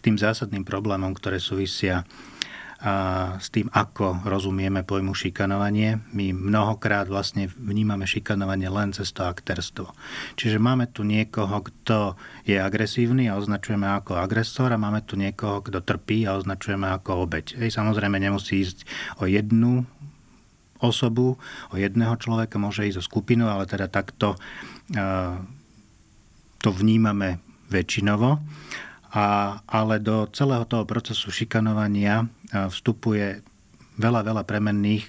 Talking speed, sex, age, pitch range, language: 120 wpm, male, 40-59, 100-115 Hz, Slovak